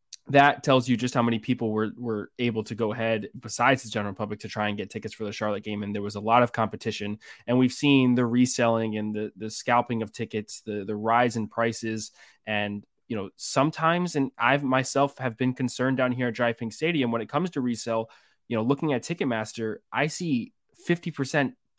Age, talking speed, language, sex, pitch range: 20-39, 215 wpm, English, male, 110-135 Hz